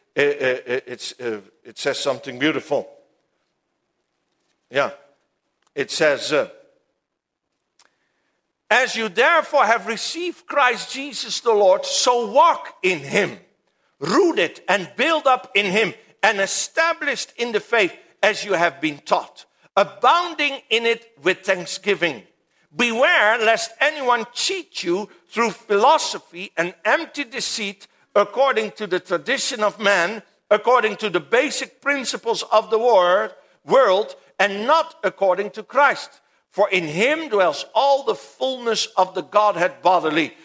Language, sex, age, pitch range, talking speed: English, male, 60-79, 190-275 Hz, 125 wpm